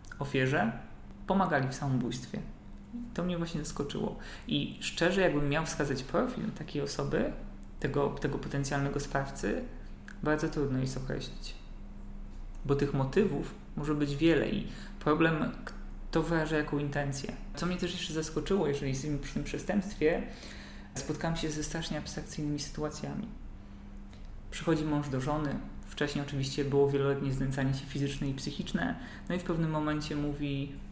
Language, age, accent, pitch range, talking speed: Polish, 20-39, native, 135-155 Hz, 140 wpm